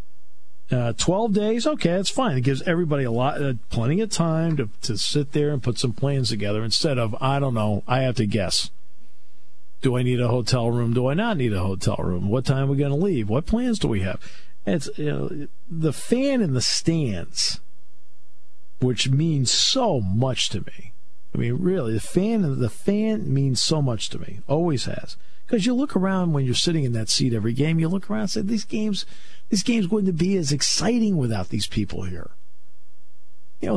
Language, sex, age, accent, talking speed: English, male, 50-69, American, 210 wpm